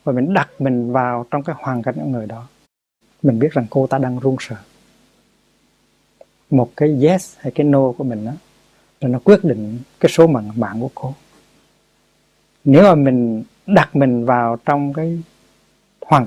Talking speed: 170 wpm